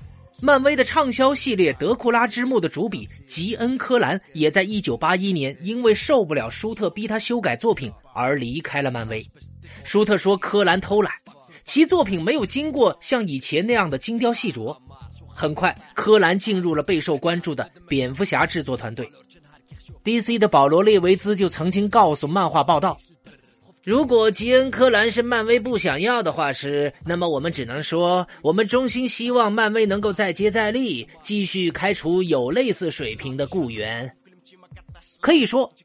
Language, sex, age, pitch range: Chinese, male, 30-49, 160-240 Hz